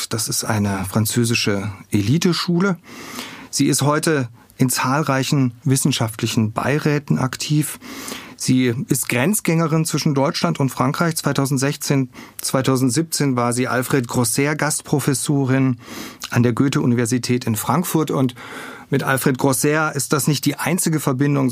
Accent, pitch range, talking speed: German, 125-150 Hz, 115 wpm